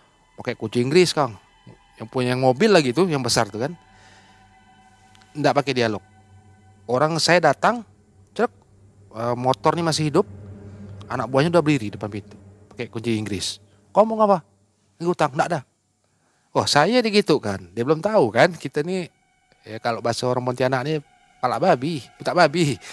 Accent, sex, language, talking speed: native, male, Indonesian, 155 wpm